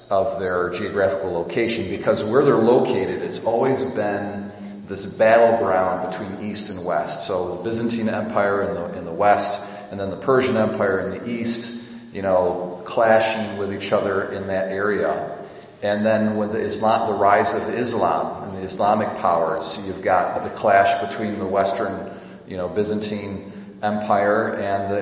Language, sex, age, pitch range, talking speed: English, male, 40-59, 95-110 Hz, 160 wpm